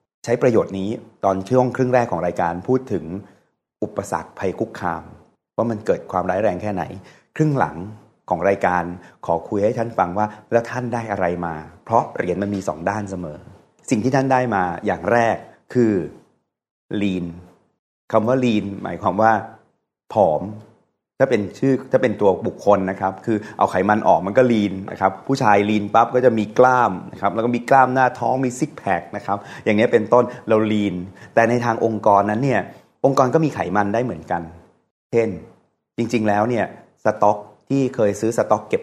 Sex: male